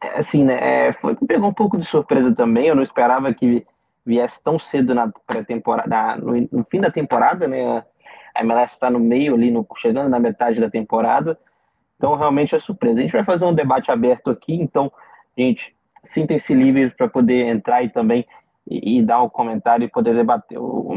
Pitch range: 120-165 Hz